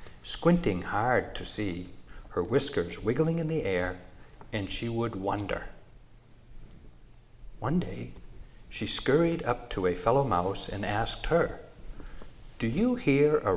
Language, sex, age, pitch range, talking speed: English, male, 60-79, 95-130 Hz, 135 wpm